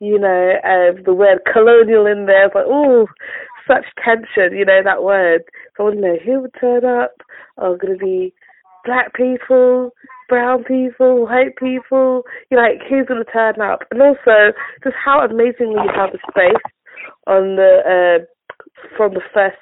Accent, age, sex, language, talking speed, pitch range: British, 20-39, female, English, 175 wpm, 200-260 Hz